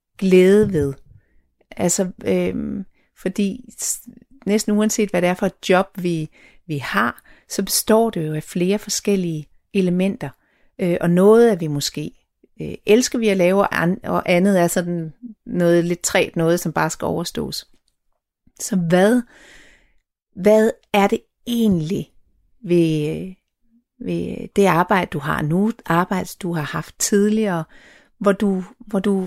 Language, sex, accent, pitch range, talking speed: Danish, female, native, 170-210 Hz, 140 wpm